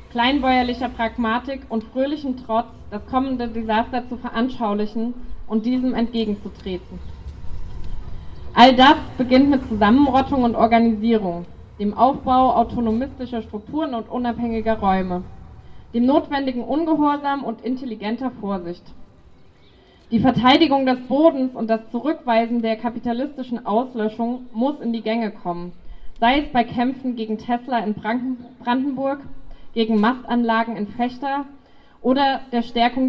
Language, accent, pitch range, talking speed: German, German, 220-255 Hz, 115 wpm